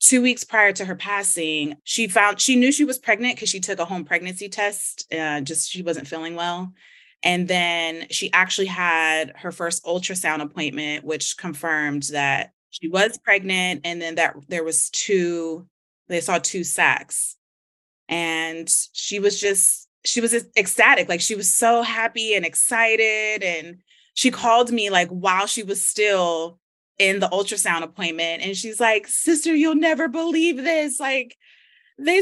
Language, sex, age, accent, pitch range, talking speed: English, female, 20-39, American, 175-230 Hz, 165 wpm